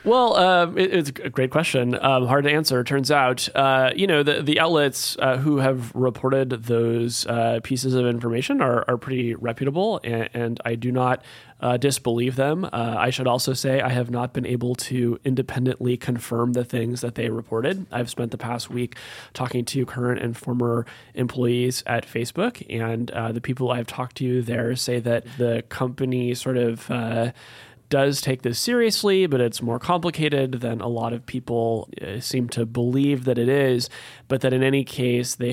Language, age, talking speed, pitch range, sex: English, 30-49, 185 wpm, 120-135 Hz, male